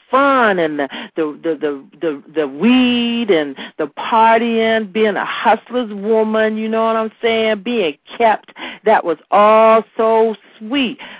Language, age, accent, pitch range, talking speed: English, 50-69, American, 175-225 Hz, 150 wpm